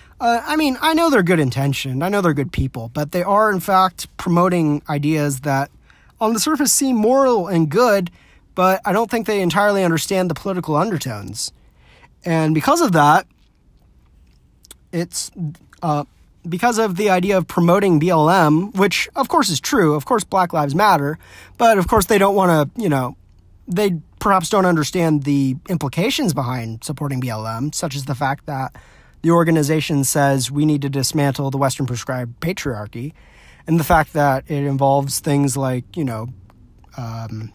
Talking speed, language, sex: 170 wpm, English, male